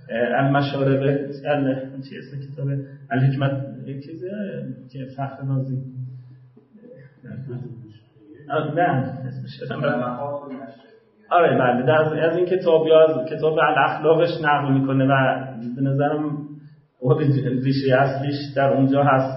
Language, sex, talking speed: Persian, male, 95 wpm